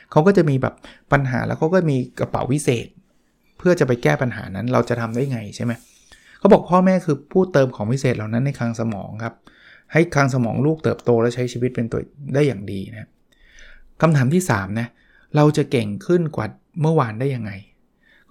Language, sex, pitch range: Thai, male, 120-155 Hz